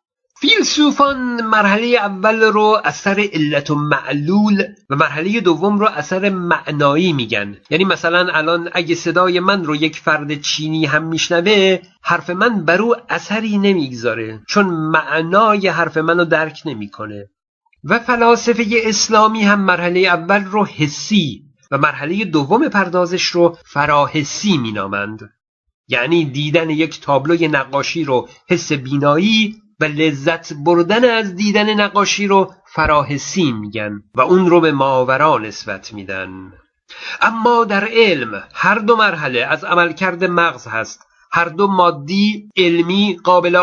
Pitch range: 150-205 Hz